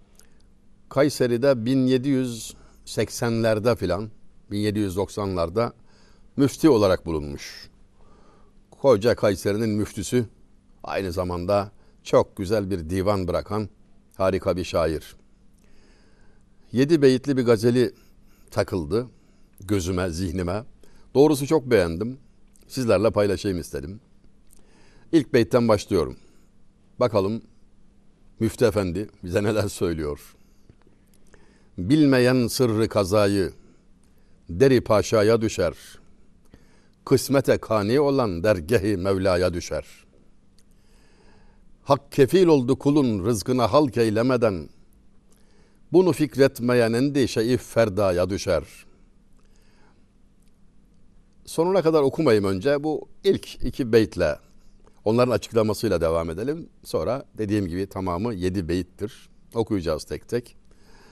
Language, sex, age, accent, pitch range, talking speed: Turkish, male, 60-79, native, 100-130 Hz, 85 wpm